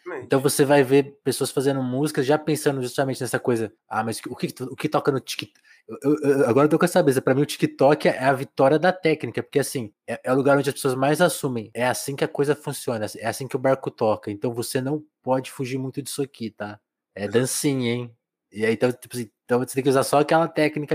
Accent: Brazilian